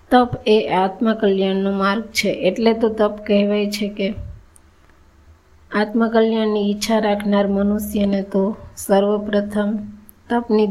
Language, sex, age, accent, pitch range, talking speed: Gujarati, female, 20-39, native, 195-220 Hz, 100 wpm